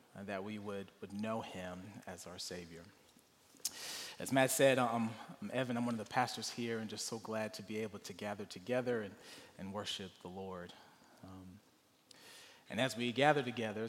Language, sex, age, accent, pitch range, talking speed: English, male, 30-49, American, 100-125 Hz, 180 wpm